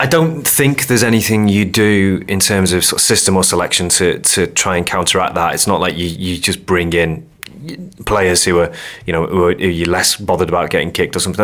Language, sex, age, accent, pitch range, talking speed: English, male, 30-49, British, 90-100 Hz, 240 wpm